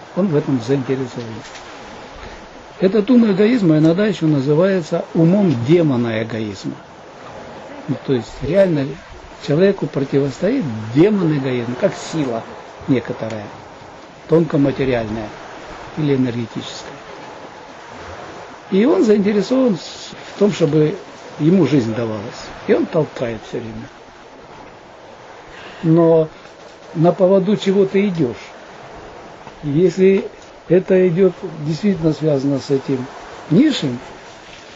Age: 60-79